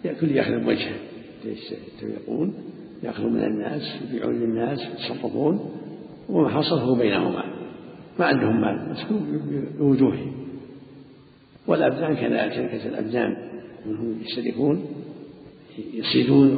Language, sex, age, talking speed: Arabic, male, 60-79, 90 wpm